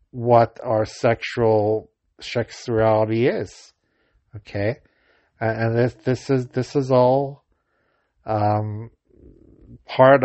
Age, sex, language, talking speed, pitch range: 60-79, male, English, 90 wpm, 110-125 Hz